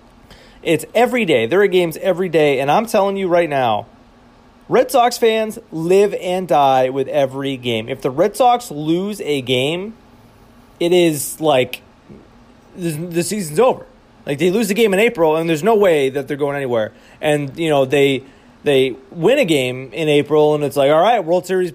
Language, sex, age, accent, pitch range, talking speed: English, male, 30-49, American, 135-180 Hz, 190 wpm